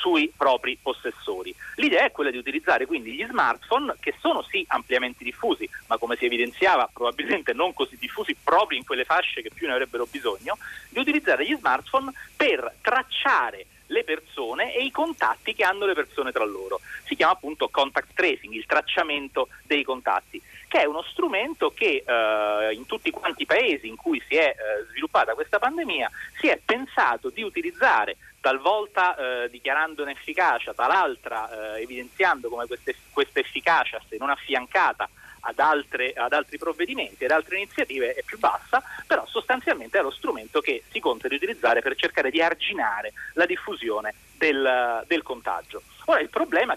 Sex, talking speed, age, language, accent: male, 165 wpm, 40-59, Italian, native